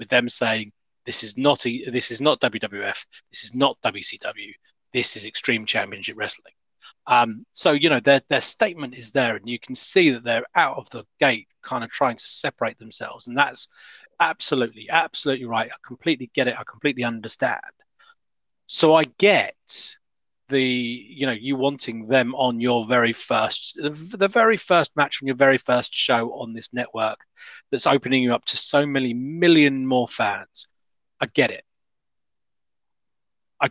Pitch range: 120-145 Hz